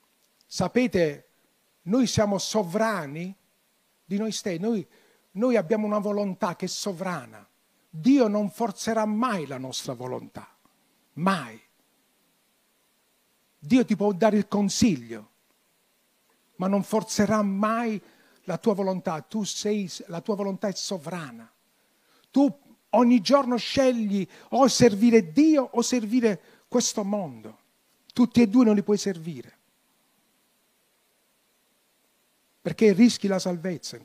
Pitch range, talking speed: 195-250 Hz, 115 wpm